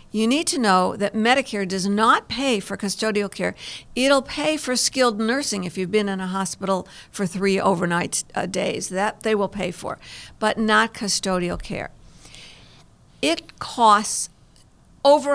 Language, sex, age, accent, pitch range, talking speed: English, female, 50-69, American, 190-230 Hz, 155 wpm